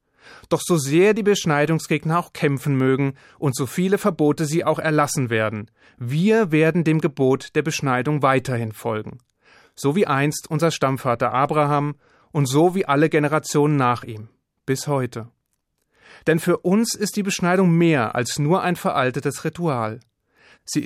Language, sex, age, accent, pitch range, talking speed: German, male, 30-49, German, 130-170 Hz, 150 wpm